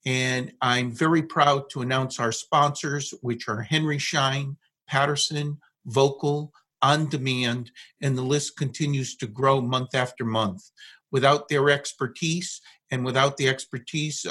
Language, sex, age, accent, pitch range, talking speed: English, male, 50-69, American, 130-155 Hz, 135 wpm